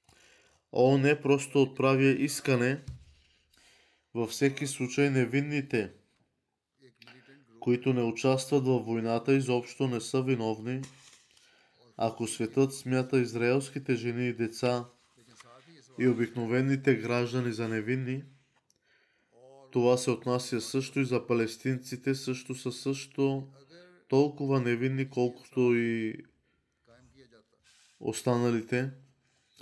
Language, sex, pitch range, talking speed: Bulgarian, male, 120-135 Hz, 90 wpm